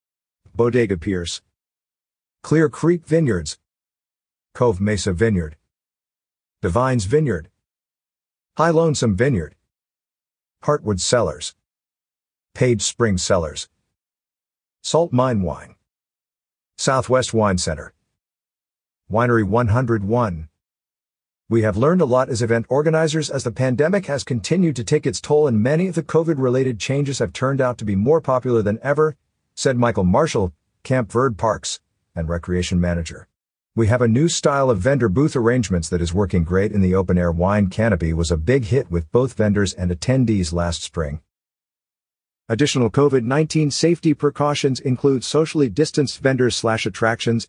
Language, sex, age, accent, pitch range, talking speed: English, male, 50-69, American, 95-135 Hz, 135 wpm